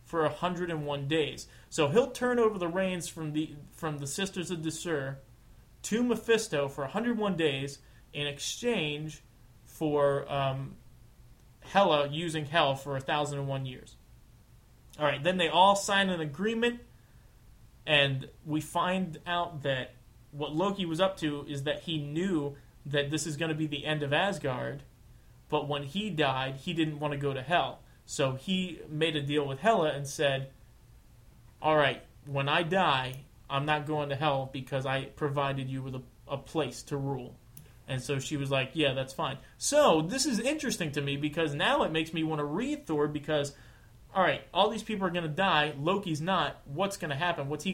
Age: 30-49